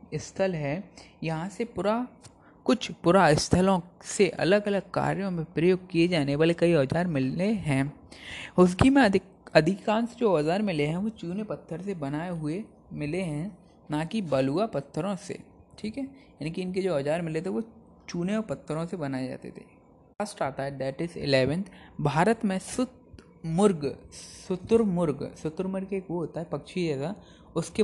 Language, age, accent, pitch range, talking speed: Hindi, 20-39, native, 150-195 Hz, 165 wpm